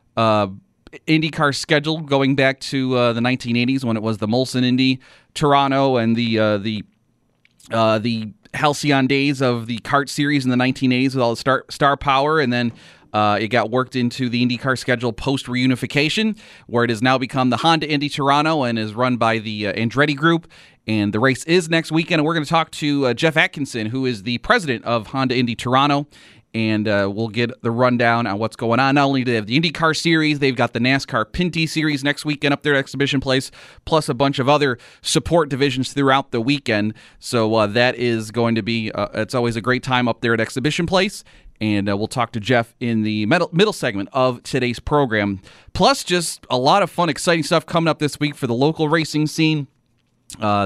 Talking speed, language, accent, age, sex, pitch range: 210 wpm, English, American, 30-49, male, 115-145 Hz